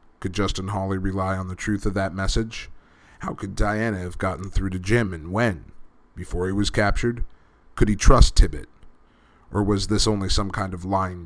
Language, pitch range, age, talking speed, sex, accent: English, 90-100 Hz, 30-49, 190 wpm, male, American